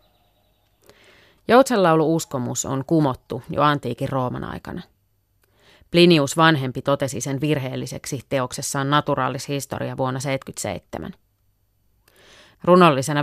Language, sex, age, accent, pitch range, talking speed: Finnish, female, 30-49, native, 105-150 Hz, 80 wpm